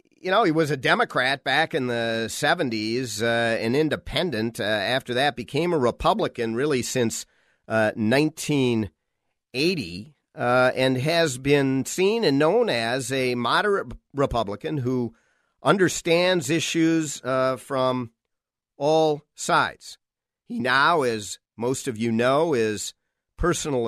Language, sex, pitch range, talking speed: English, male, 120-155 Hz, 125 wpm